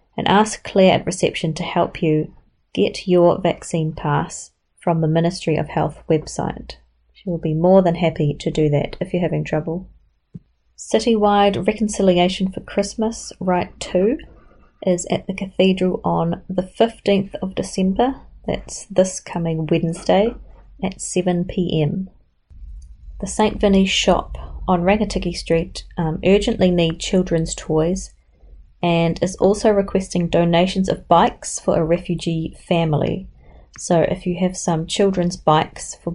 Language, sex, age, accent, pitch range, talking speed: English, female, 30-49, Australian, 160-190 Hz, 140 wpm